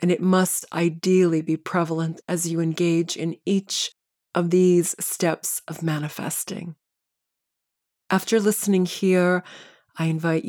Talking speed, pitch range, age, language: 120 wpm, 165-185 Hz, 30-49, English